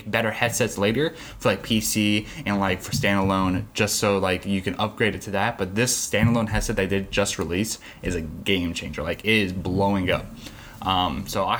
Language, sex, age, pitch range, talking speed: English, male, 20-39, 95-115 Hz, 200 wpm